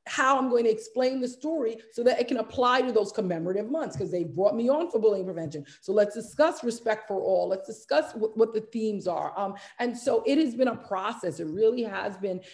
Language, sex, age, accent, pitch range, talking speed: English, female, 40-59, American, 185-235 Hz, 230 wpm